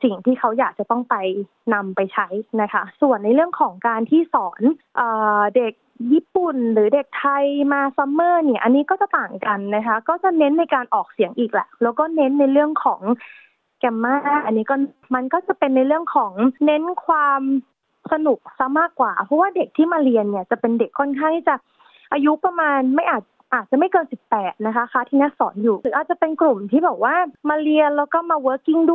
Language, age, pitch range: Thai, 20-39, 230-305 Hz